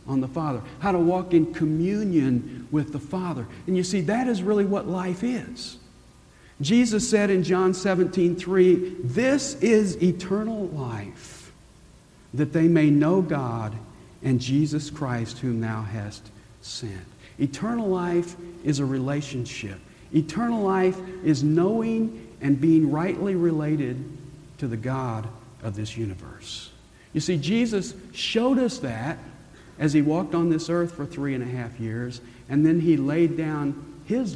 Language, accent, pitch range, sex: English, American, 115-175 Hz, male